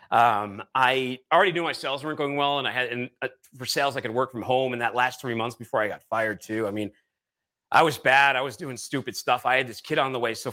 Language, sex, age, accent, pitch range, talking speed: English, male, 30-49, American, 120-150 Hz, 275 wpm